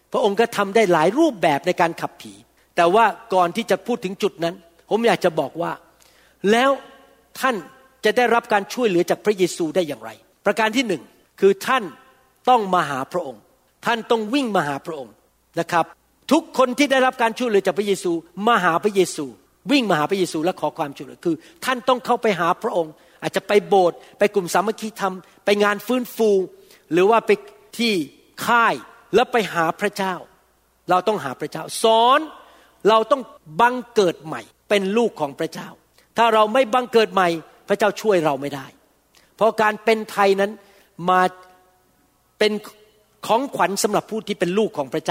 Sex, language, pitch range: male, Thai, 175-230 Hz